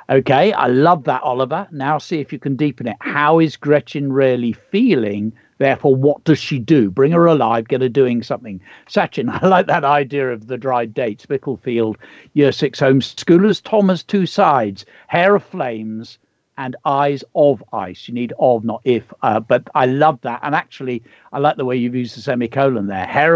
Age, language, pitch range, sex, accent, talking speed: 50-69, English, 120-155 Hz, male, British, 190 wpm